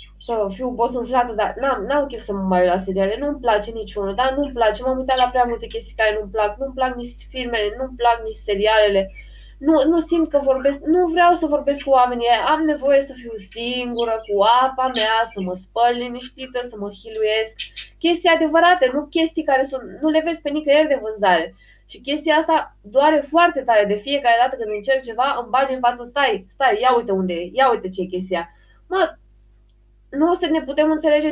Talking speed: 210 wpm